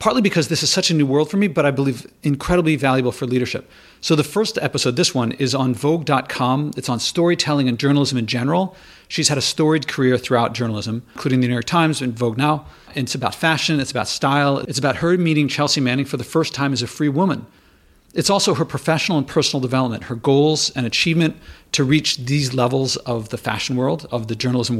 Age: 40-59